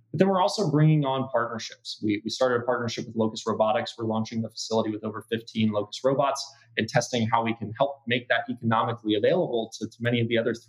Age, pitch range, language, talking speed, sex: 20-39, 110-135 Hz, English, 225 wpm, male